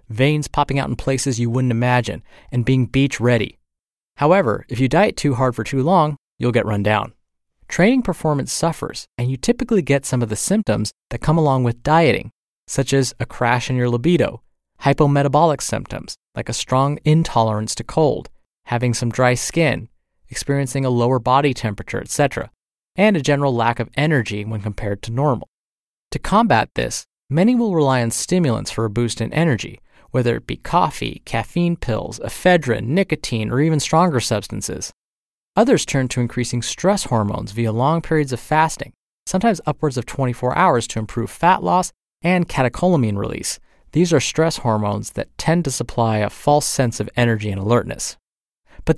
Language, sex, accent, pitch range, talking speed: English, male, American, 115-155 Hz, 170 wpm